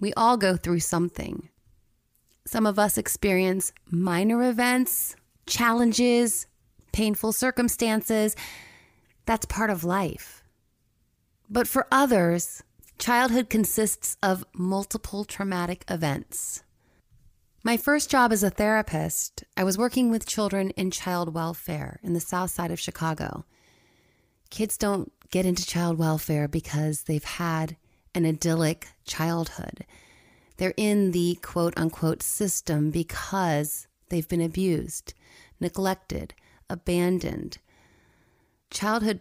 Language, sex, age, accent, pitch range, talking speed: English, female, 30-49, American, 165-210 Hz, 110 wpm